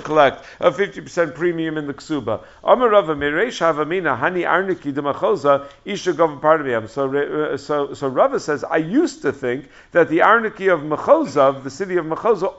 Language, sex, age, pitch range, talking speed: English, male, 50-69, 145-180 Hz, 130 wpm